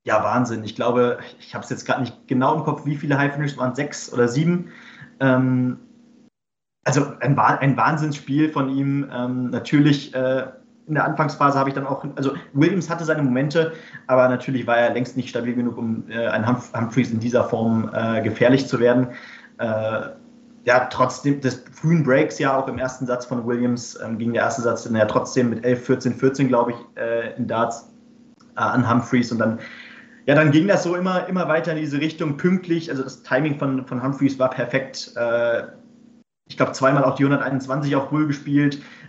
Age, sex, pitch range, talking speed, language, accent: 30-49, male, 125-145 Hz, 195 wpm, German, German